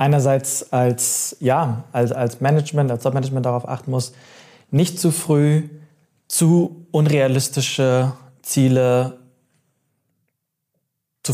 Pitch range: 125-150 Hz